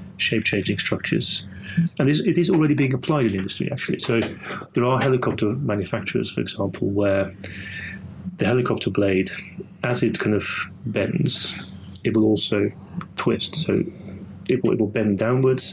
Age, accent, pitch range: 30-49, British, 95-115 Hz